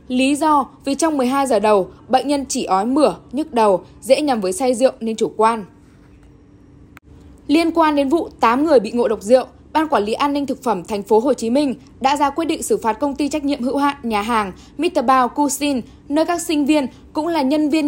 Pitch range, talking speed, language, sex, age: 235-290 Hz, 230 wpm, Vietnamese, female, 10-29